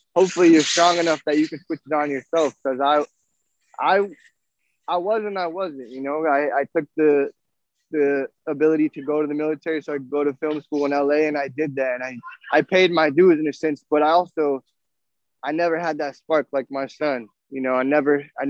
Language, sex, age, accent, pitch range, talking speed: English, male, 20-39, American, 135-155 Hz, 220 wpm